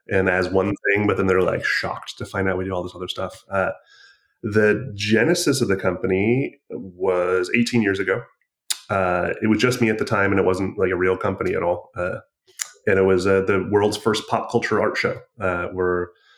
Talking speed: 215 wpm